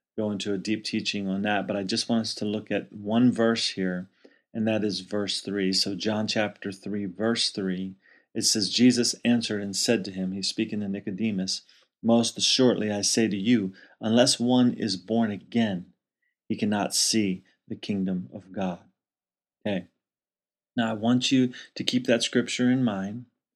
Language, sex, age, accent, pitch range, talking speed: English, male, 30-49, American, 100-115 Hz, 180 wpm